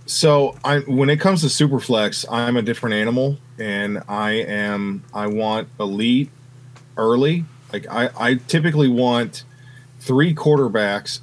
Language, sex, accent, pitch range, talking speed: English, male, American, 110-130 Hz, 130 wpm